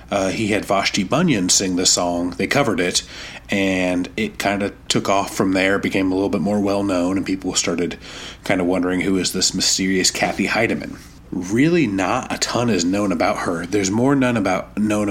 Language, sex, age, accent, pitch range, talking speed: English, male, 30-49, American, 90-105 Hz, 205 wpm